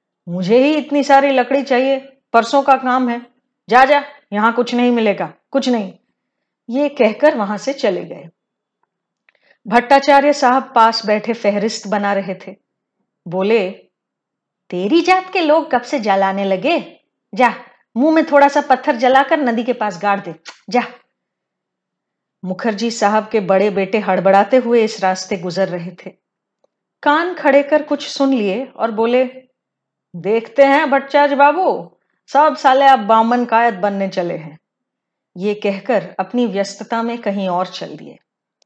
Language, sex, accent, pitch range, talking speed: Hindi, female, native, 195-270 Hz, 145 wpm